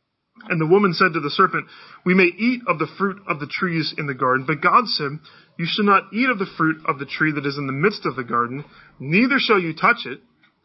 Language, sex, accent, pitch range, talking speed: English, male, American, 145-190 Hz, 255 wpm